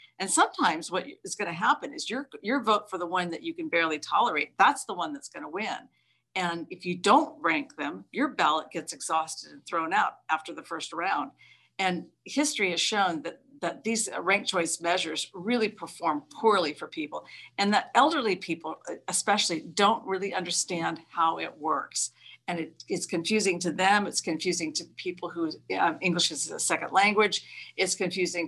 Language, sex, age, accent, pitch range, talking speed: English, female, 50-69, American, 160-200 Hz, 180 wpm